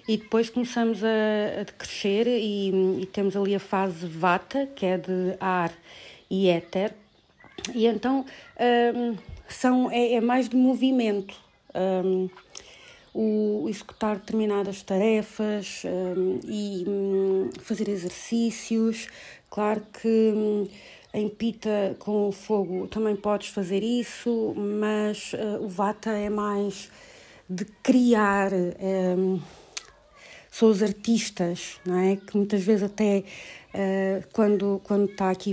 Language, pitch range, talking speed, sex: Portuguese, 190-220 Hz, 125 wpm, female